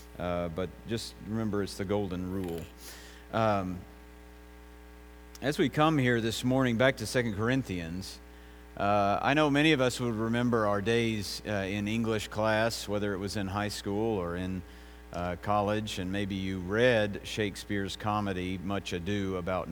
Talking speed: 160 wpm